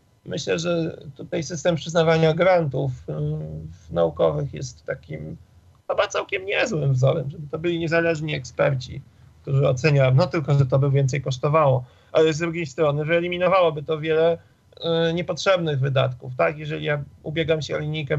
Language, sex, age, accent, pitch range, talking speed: Polish, male, 40-59, native, 130-165 Hz, 150 wpm